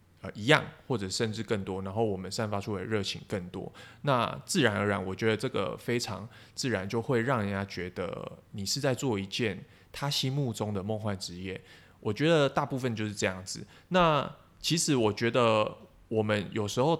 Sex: male